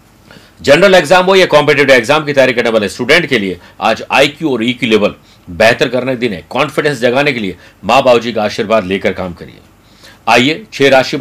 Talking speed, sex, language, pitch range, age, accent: 200 wpm, male, Hindi, 110-165 Hz, 50-69, native